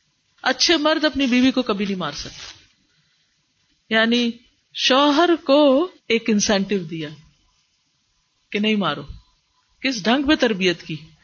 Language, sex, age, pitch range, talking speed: Urdu, female, 50-69, 210-275 Hz, 125 wpm